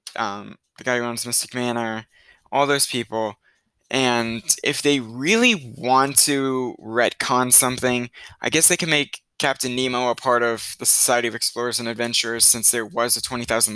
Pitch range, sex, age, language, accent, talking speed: 115-145 Hz, male, 20-39, English, American, 175 wpm